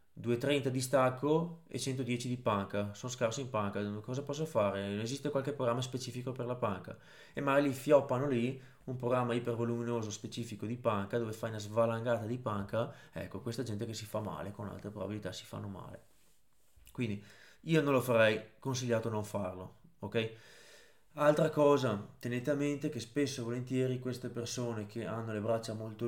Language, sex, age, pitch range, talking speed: Italian, male, 20-39, 105-125 Hz, 175 wpm